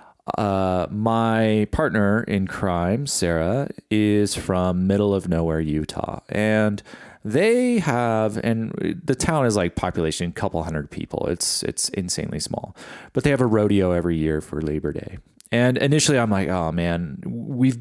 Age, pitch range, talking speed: 30-49, 85-115 Hz, 155 wpm